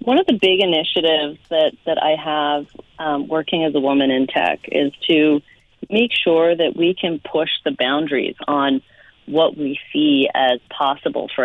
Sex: female